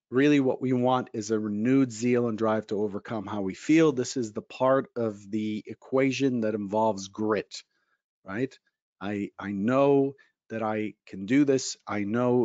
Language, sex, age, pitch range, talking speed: English, male, 40-59, 110-135 Hz, 175 wpm